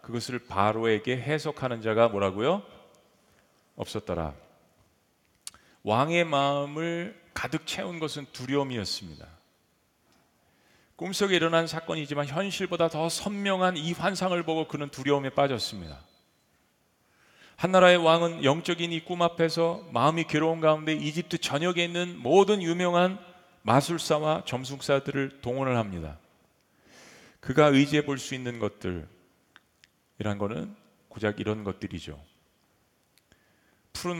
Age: 40-59